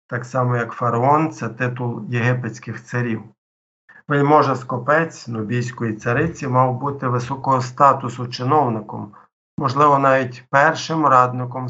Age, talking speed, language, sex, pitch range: 50-69, 110 wpm, Ukrainian, male, 120-145 Hz